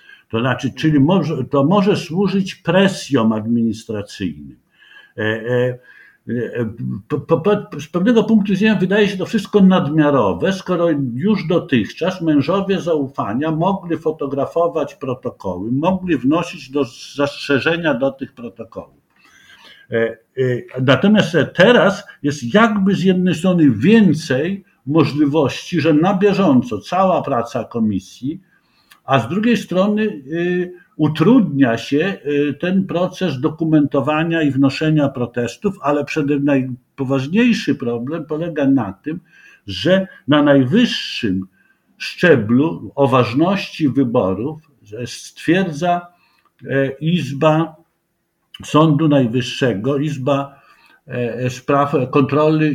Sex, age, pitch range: male, 60-79, 135-185 Hz